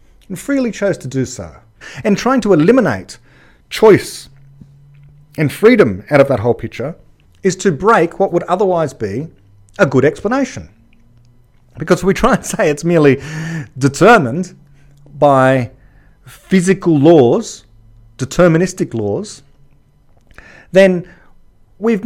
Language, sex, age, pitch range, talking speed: English, male, 40-59, 125-180 Hz, 115 wpm